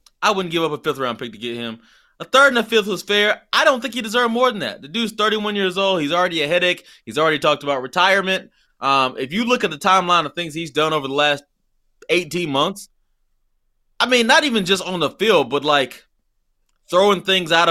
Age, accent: 20-39, American